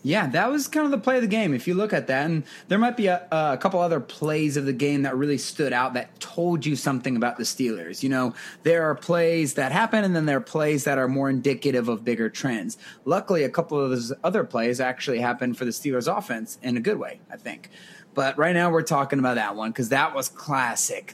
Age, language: 30-49, English